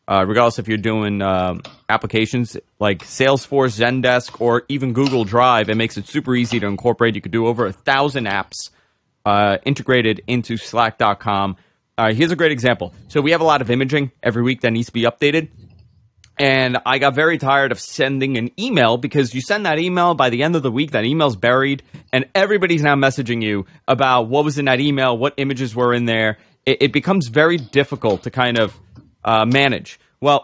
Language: English